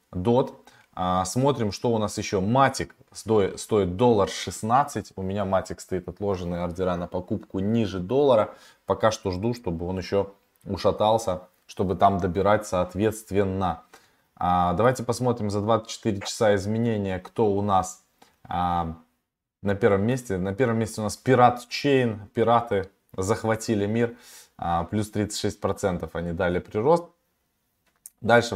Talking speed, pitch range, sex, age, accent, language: 125 wpm, 95-115 Hz, male, 20-39, native, Russian